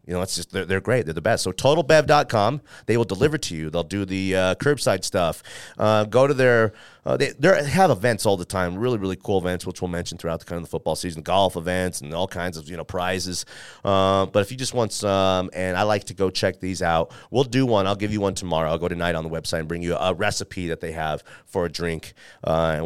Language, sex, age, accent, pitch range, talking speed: English, male, 30-49, American, 95-130 Hz, 260 wpm